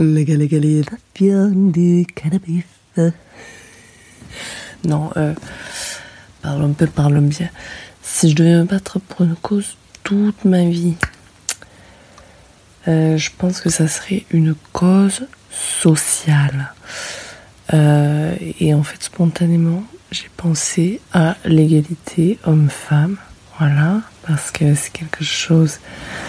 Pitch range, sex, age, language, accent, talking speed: 145-170 Hz, female, 20-39, French, French, 105 wpm